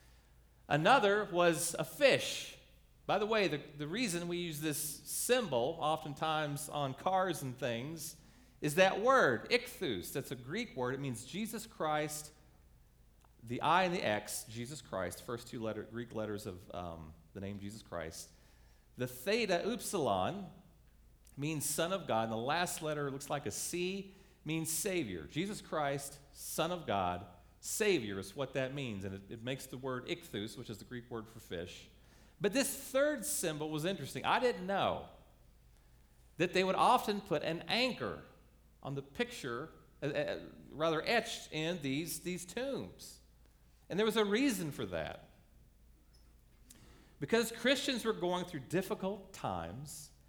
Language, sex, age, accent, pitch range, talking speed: English, male, 40-59, American, 120-190 Hz, 155 wpm